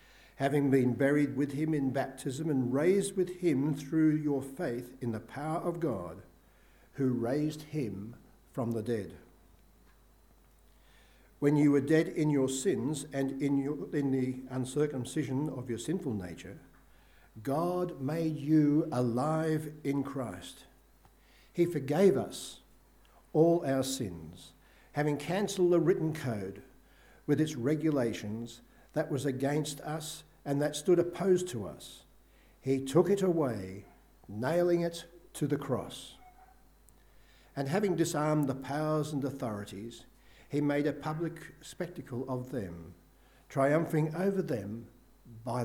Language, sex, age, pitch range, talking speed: English, male, 60-79, 125-155 Hz, 130 wpm